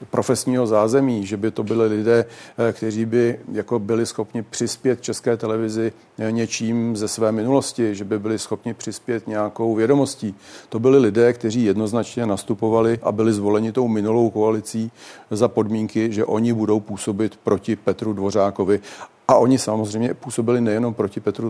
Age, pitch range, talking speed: 50-69, 110-115 Hz, 150 wpm